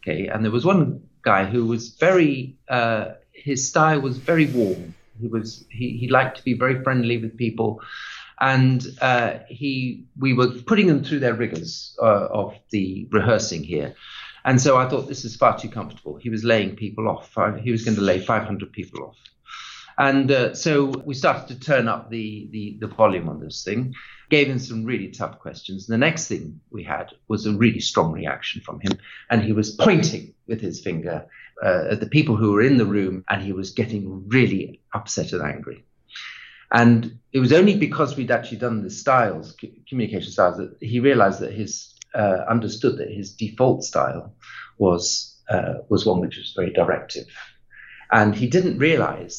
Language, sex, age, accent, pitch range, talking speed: English, male, 50-69, British, 105-130 Hz, 190 wpm